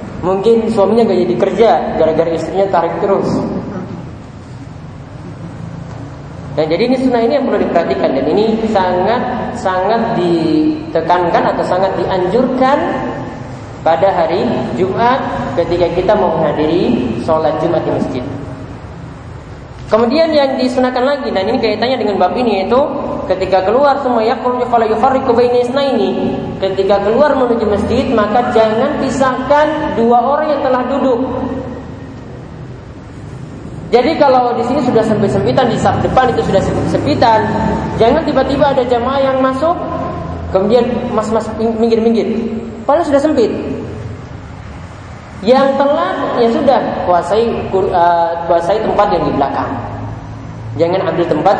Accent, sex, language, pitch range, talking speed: Indonesian, male, English, 165-250 Hz, 120 wpm